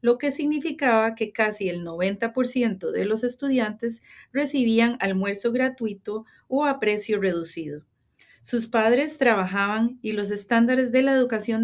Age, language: 30-49, English